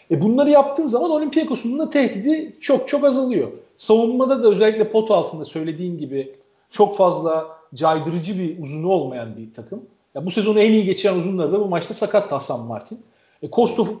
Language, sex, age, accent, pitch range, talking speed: Turkish, male, 40-59, native, 160-220 Hz, 170 wpm